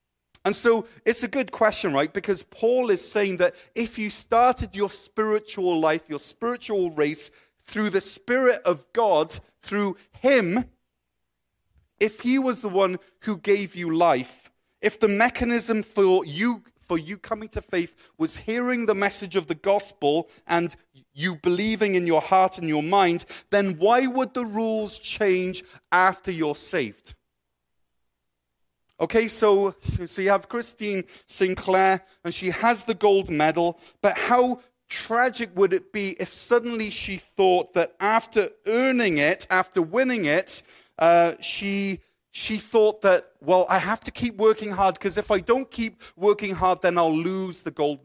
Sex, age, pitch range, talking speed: male, 40-59, 170-220 Hz, 155 wpm